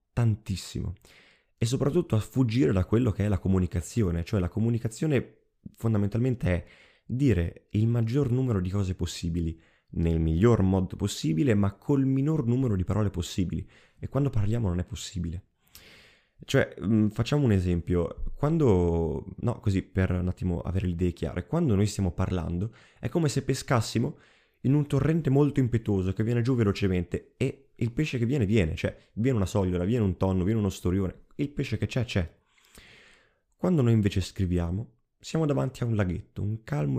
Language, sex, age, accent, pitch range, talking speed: Italian, male, 20-39, native, 90-120 Hz, 165 wpm